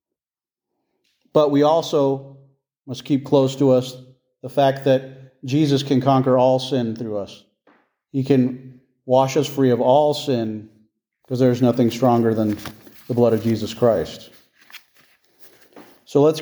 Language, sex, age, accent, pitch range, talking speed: English, male, 40-59, American, 125-150 Hz, 140 wpm